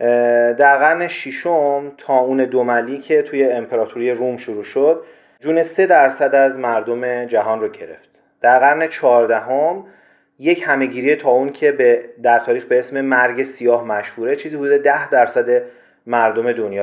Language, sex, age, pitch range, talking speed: Persian, male, 30-49, 130-170 Hz, 145 wpm